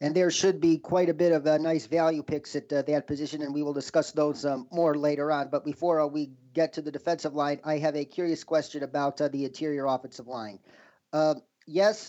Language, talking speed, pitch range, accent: English, 235 wpm, 145-165 Hz, American